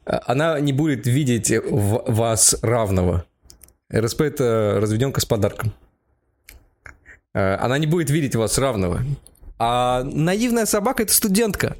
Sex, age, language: male, 20-39, Russian